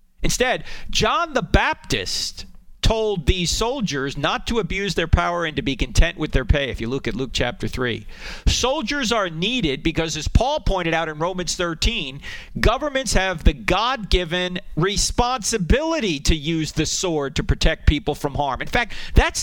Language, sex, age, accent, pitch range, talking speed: English, male, 40-59, American, 150-210 Hz, 165 wpm